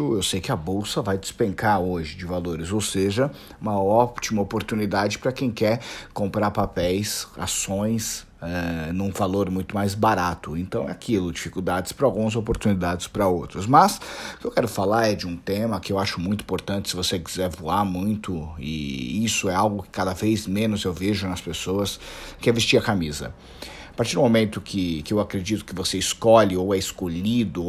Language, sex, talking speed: Portuguese, male, 190 wpm